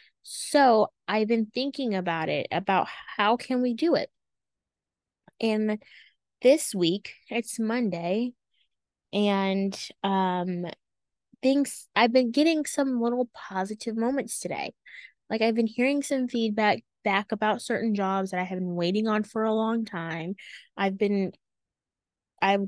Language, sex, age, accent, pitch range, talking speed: English, female, 20-39, American, 205-265 Hz, 135 wpm